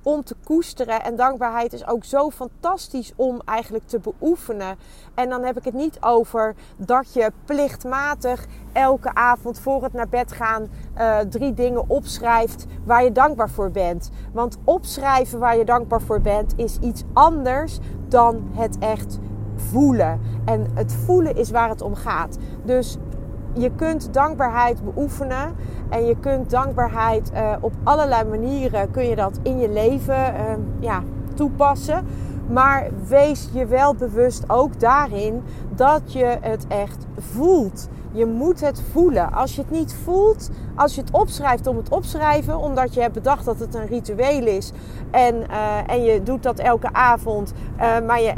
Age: 30-49